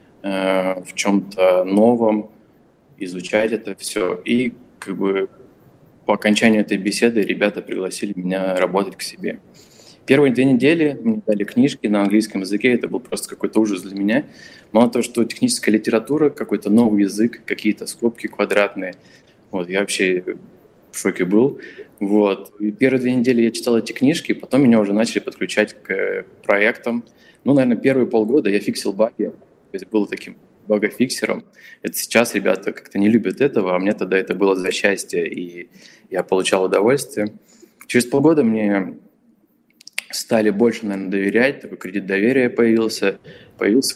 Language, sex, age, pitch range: Russian, male, 20-39, 100-120 Hz